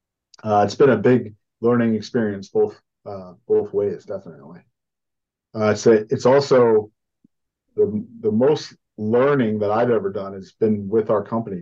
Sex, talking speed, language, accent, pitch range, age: male, 155 wpm, English, American, 110-130 Hz, 40-59